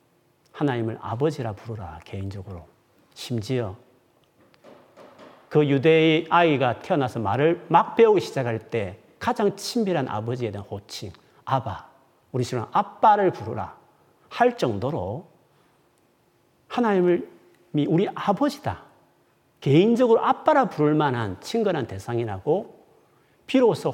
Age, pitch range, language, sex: 40-59, 115-190 Hz, Korean, male